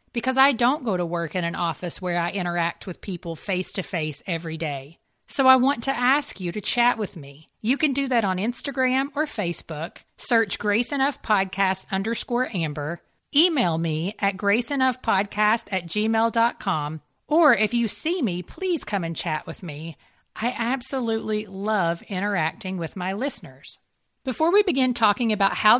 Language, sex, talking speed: English, female, 165 wpm